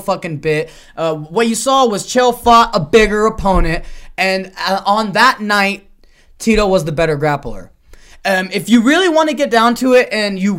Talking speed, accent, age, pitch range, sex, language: 195 wpm, American, 20-39, 185-235 Hz, male, English